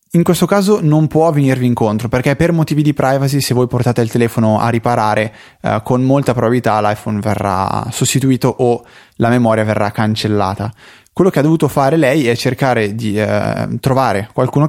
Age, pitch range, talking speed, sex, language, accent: 20-39, 105-130 Hz, 175 wpm, male, Italian, native